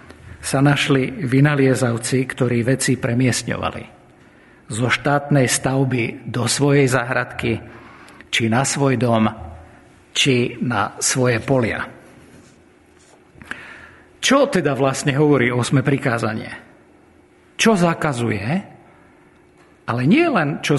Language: Slovak